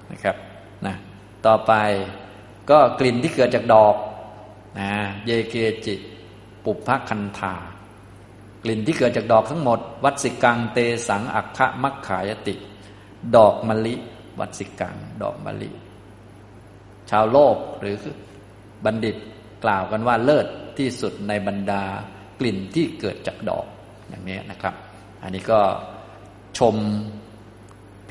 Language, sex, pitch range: Thai, male, 100-115 Hz